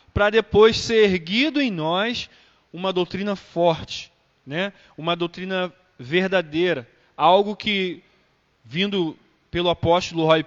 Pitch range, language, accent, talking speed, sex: 160-210 Hz, Portuguese, Brazilian, 110 wpm, male